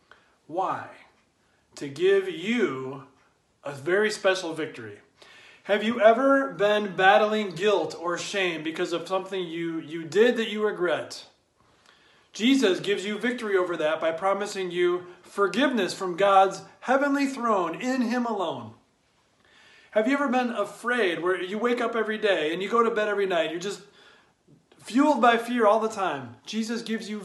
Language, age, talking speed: English, 30-49, 155 wpm